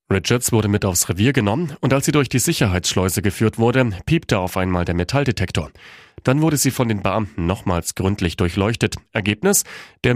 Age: 40-59